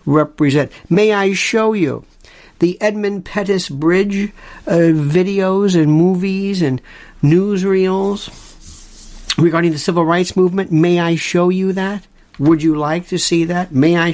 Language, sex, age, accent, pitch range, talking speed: English, male, 50-69, American, 160-200 Hz, 140 wpm